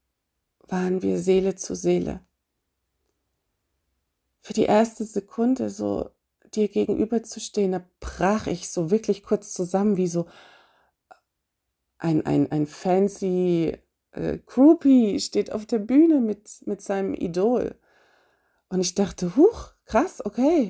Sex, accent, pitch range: female, German, 140-215 Hz